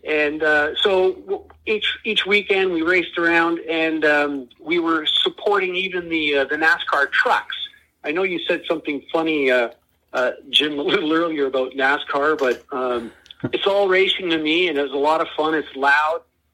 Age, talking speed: 40-59, 180 wpm